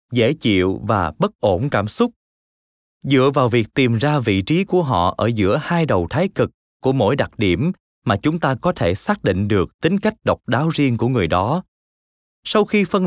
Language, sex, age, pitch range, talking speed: Vietnamese, male, 20-39, 105-170 Hz, 205 wpm